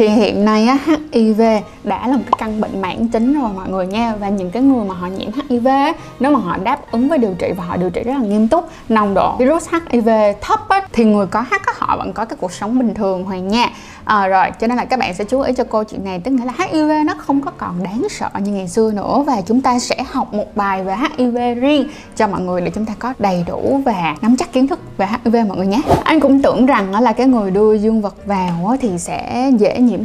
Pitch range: 205-265 Hz